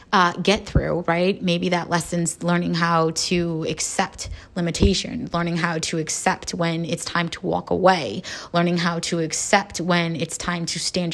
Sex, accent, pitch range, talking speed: female, American, 160-185 Hz, 165 wpm